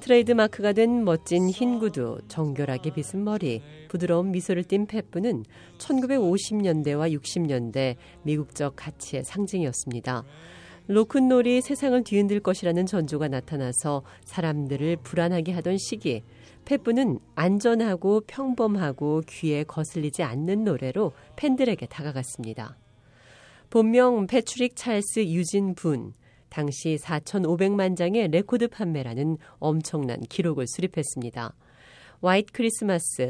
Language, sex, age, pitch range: Korean, female, 40-59, 140-210 Hz